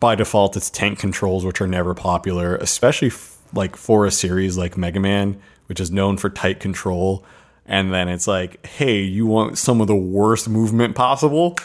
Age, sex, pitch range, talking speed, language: 20-39, male, 95-110 Hz, 190 wpm, English